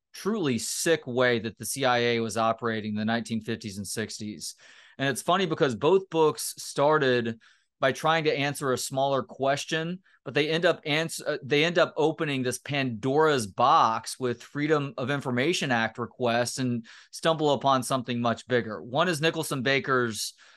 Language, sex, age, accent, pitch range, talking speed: English, male, 30-49, American, 120-150 Hz, 160 wpm